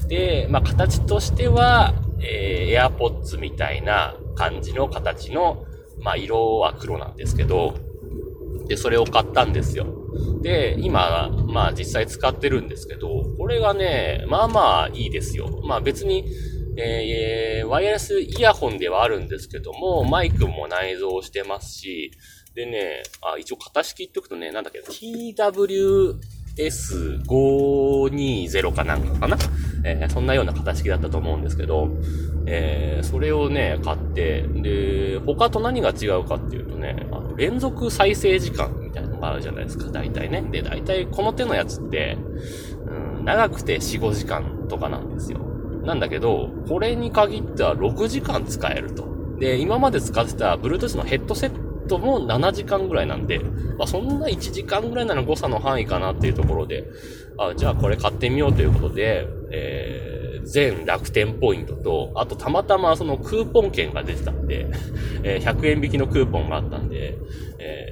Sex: male